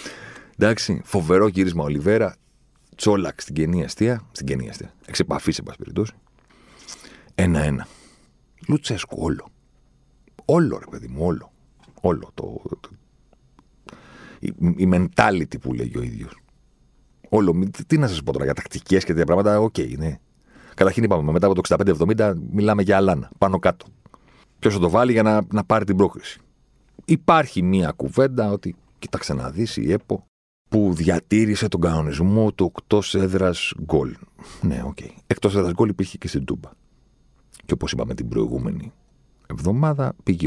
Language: Greek